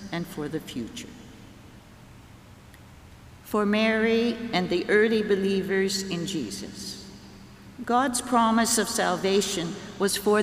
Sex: female